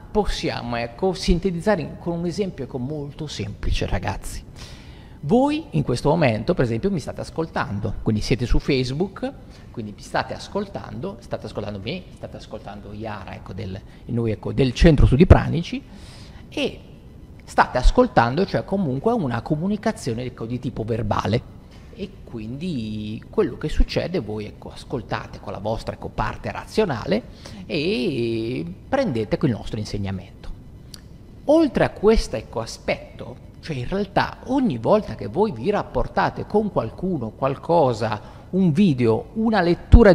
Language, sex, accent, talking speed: Italian, male, native, 140 wpm